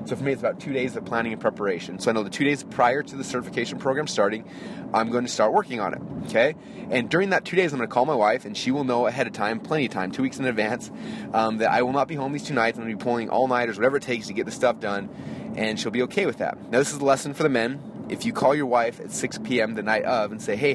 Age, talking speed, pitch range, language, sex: 30-49, 310 wpm, 110-140 Hz, English, male